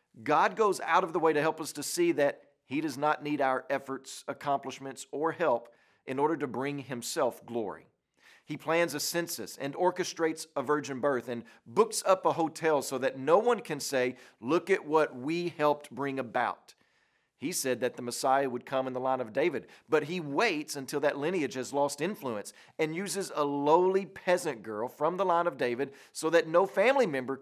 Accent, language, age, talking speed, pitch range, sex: American, English, 40-59, 200 wpm, 130-170 Hz, male